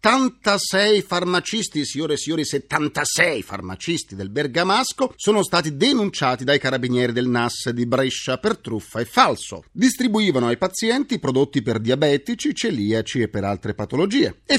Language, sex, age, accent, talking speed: Italian, male, 40-59, native, 140 wpm